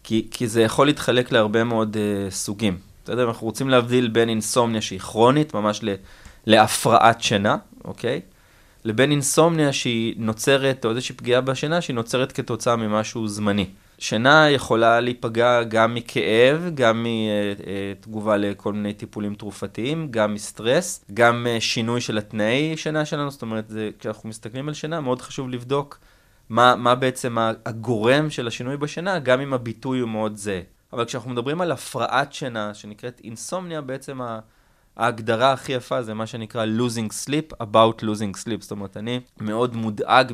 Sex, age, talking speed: male, 20-39, 150 wpm